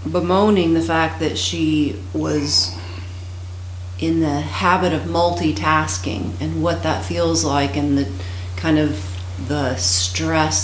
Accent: American